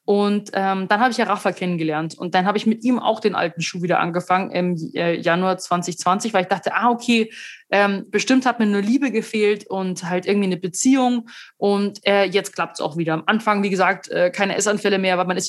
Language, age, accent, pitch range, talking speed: German, 20-39, German, 185-210 Hz, 230 wpm